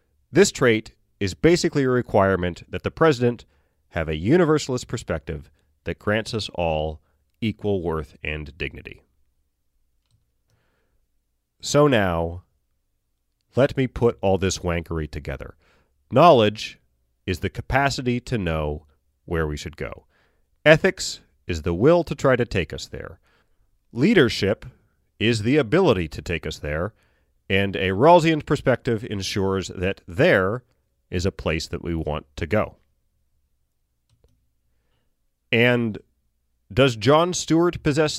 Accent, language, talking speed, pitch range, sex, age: American, English, 125 wpm, 75-125 Hz, male, 30-49